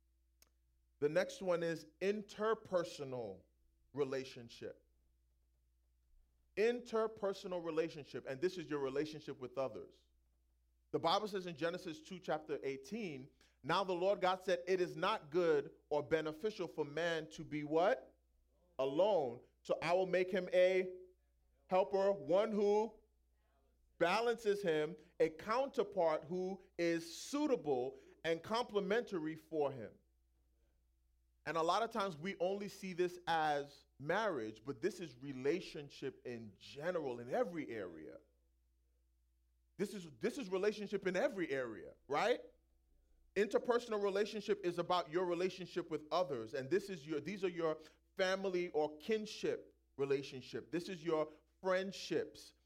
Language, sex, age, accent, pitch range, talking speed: English, male, 30-49, American, 135-190 Hz, 130 wpm